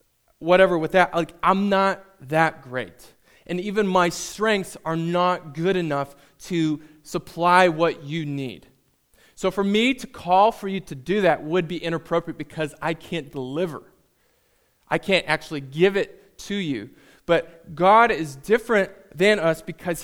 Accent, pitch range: American, 155-190 Hz